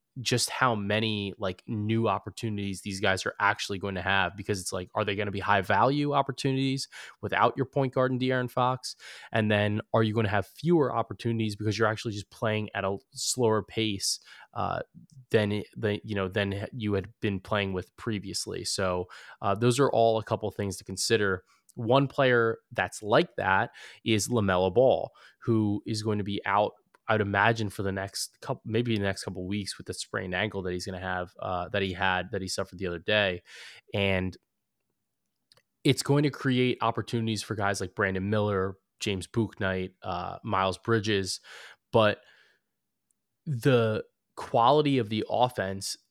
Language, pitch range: English, 95-115 Hz